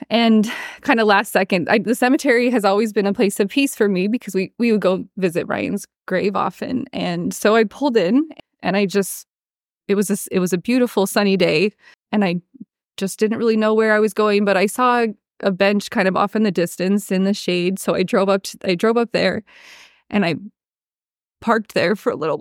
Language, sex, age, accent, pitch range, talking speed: English, female, 20-39, American, 205-265 Hz, 215 wpm